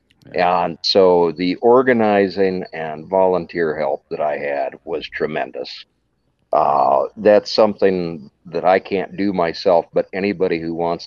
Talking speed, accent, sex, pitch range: 130 wpm, American, male, 80-95 Hz